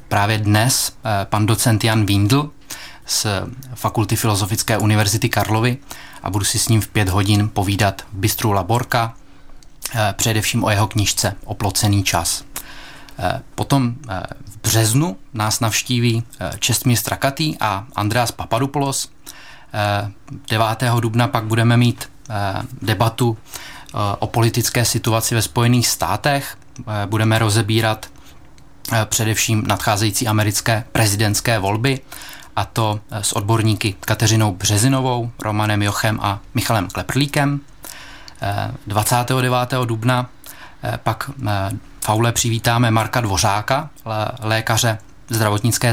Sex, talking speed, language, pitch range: male, 100 wpm, Czech, 105-120 Hz